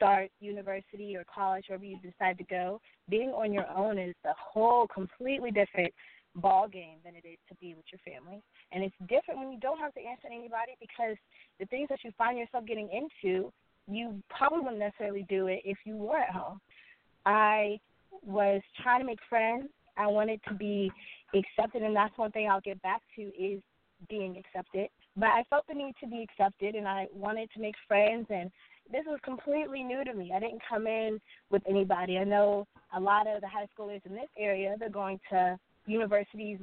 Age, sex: 20-39, female